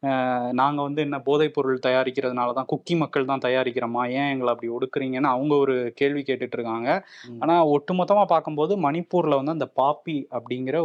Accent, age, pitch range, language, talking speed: native, 20-39, 130-155 Hz, Tamil, 155 wpm